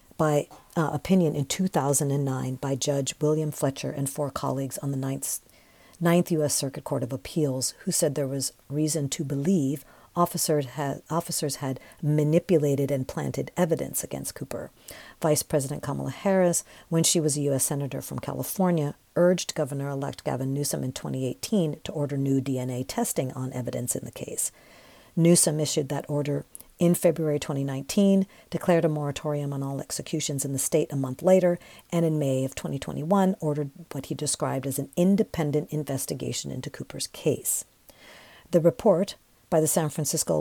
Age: 50-69